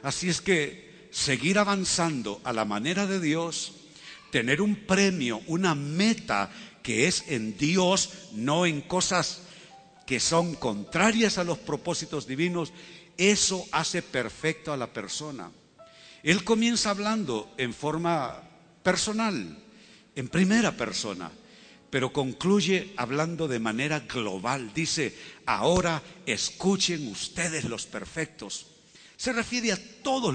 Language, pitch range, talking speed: Spanish, 130-185 Hz, 120 wpm